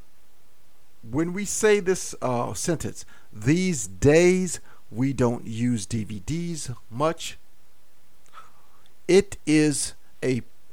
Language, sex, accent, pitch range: English, male, American, 115-180 Hz